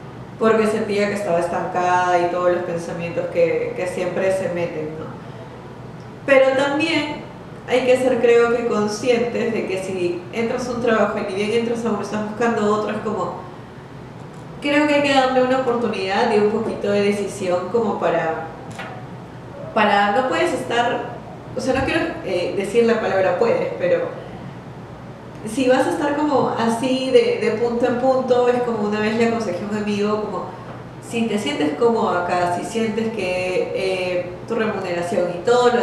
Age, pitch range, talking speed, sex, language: 20-39, 180-235 Hz, 170 wpm, female, Spanish